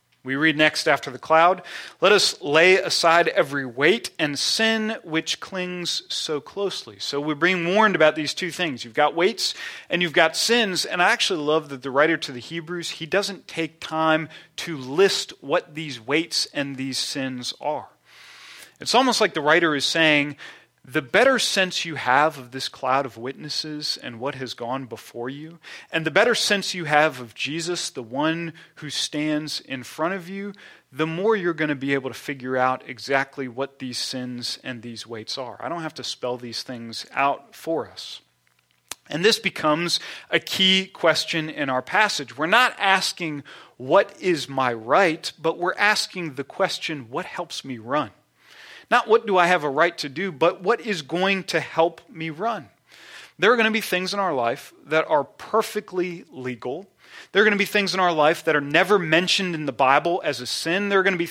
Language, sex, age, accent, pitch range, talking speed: English, male, 30-49, American, 140-185 Hz, 200 wpm